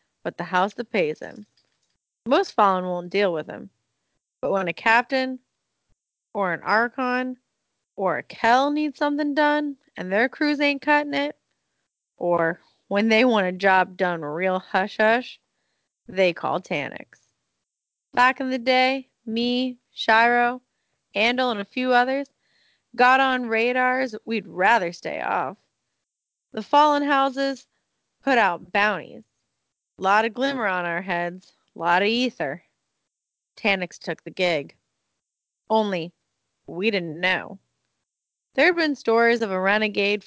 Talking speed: 135 wpm